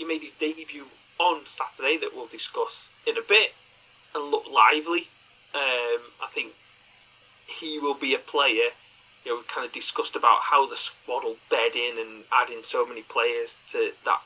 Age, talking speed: 30-49, 175 wpm